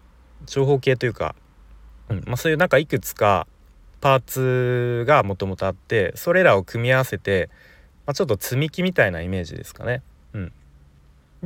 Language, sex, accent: Japanese, male, native